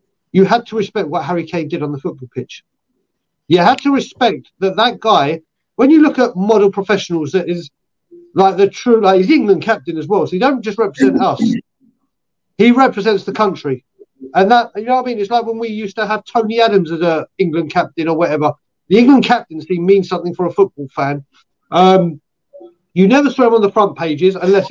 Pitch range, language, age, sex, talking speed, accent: 170-225 Hz, English, 40-59, male, 210 wpm, British